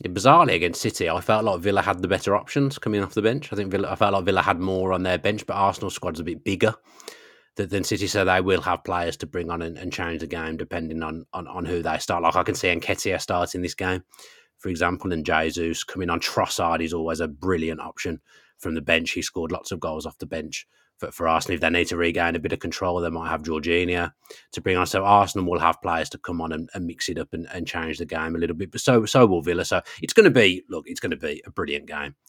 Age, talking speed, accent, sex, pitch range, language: 30-49, 270 wpm, British, male, 85-100 Hz, English